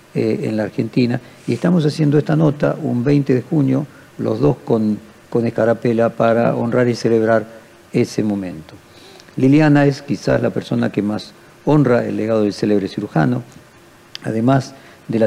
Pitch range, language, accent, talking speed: 110-135 Hz, Spanish, Argentinian, 155 wpm